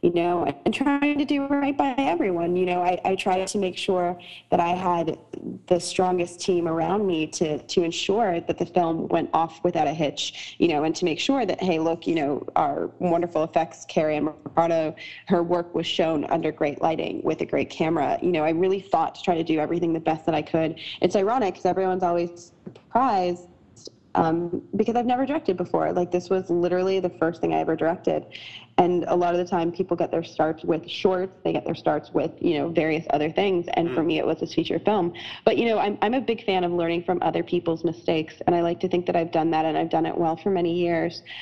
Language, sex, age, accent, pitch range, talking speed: English, female, 20-39, American, 165-185 Hz, 235 wpm